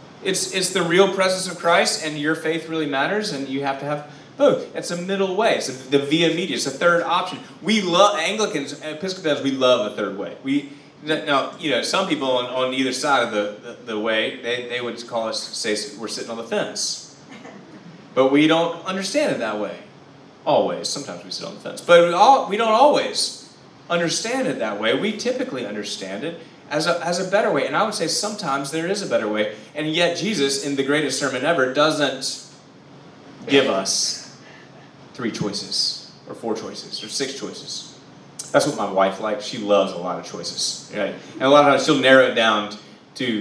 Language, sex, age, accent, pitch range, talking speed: English, male, 30-49, American, 130-185 Hz, 205 wpm